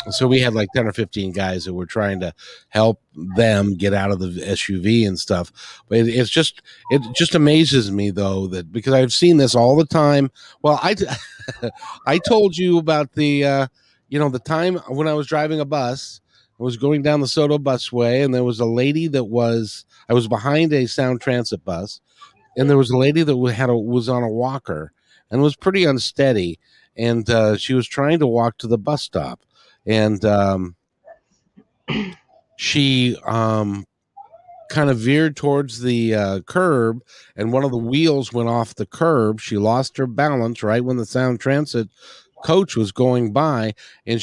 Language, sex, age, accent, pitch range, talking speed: English, male, 50-69, American, 115-145 Hz, 185 wpm